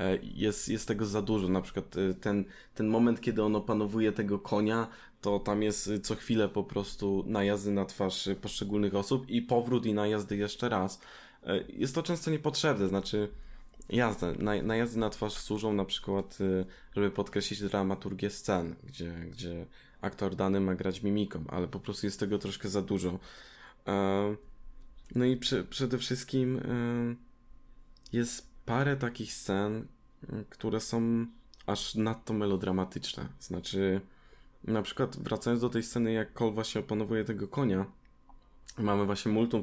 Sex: male